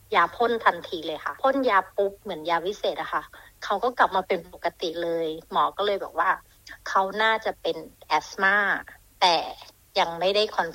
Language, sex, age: Thai, female, 60-79